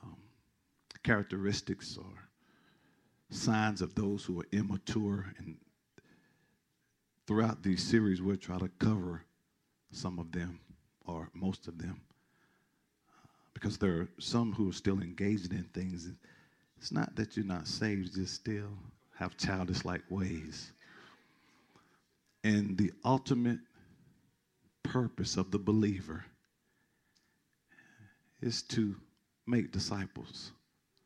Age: 50-69